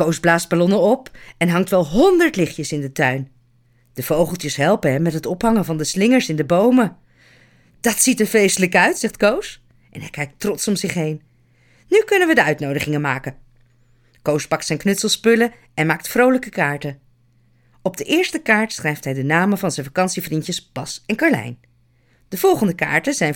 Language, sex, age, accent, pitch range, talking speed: Dutch, female, 40-59, Dutch, 145-210 Hz, 180 wpm